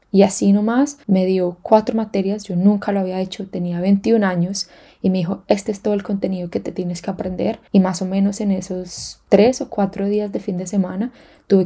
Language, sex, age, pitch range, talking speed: Spanish, female, 10-29, 185-215 Hz, 220 wpm